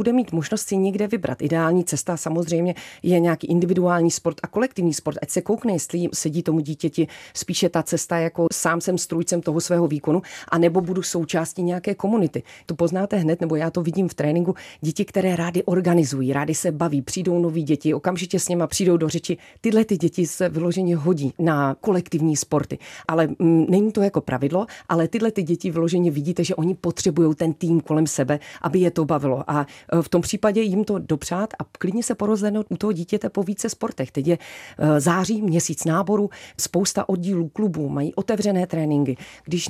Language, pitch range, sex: Czech, 160-190 Hz, female